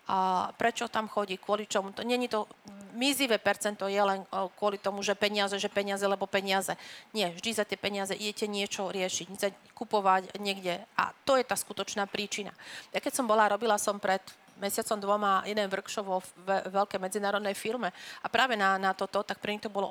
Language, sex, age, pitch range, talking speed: Slovak, female, 40-59, 195-220 Hz, 185 wpm